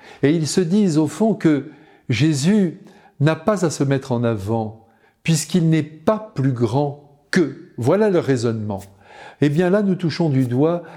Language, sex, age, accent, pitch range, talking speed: French, male, 50-69, French, 125-170 Hz, 170 wpm